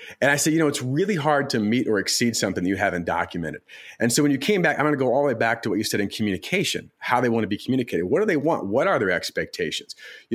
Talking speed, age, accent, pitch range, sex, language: 300 wpm, 40-59, American, 105-150 Hz, male, English